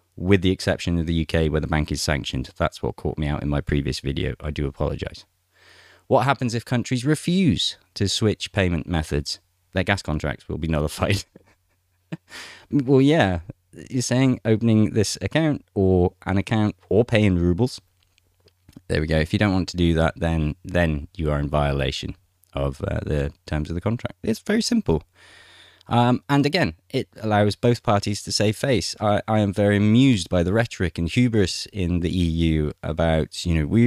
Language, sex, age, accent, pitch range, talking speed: English, male, 30-49, British, 85-120 Hz, 185 wpm